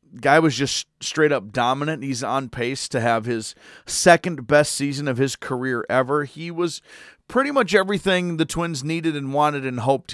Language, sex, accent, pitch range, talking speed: English, male, American, 130-165 Hz, 170 wpm